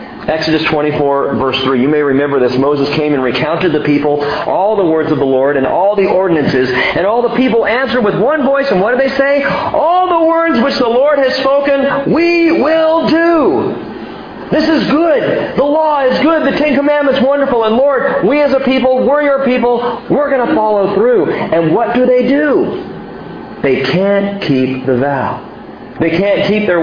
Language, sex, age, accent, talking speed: English, male, 40-59, American, 195 wpm